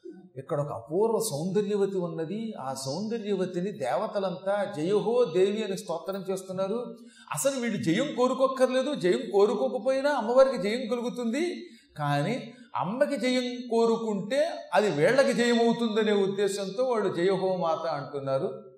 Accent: native